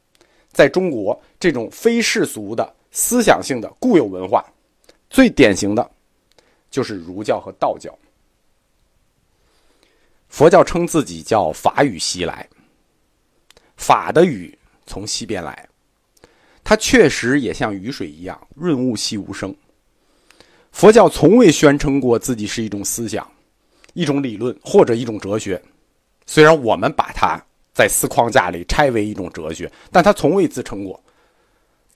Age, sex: 50-69, male